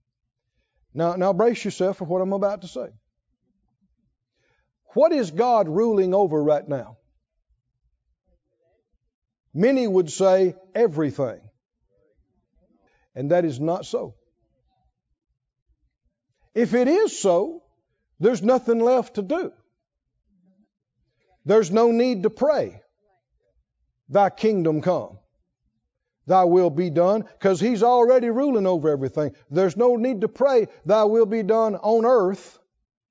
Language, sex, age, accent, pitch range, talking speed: English, male, 50-69, American, 175-235 Hz, 115 wpm